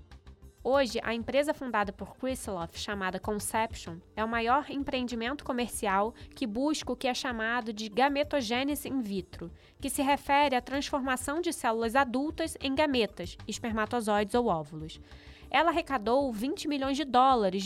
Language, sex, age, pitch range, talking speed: Portuguese, female, 20-39, 230-280 Hz, 145 wpm